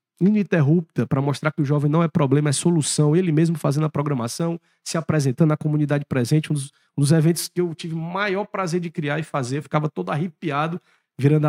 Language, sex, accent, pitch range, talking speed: Portuguese, male, Brazilian, 140-165 Hz, 210 wpm